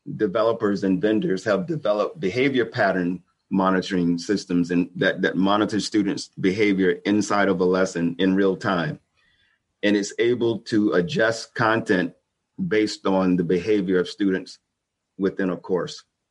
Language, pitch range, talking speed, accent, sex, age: English, 90-110 Hz, 135 wpm, American, male, 40-59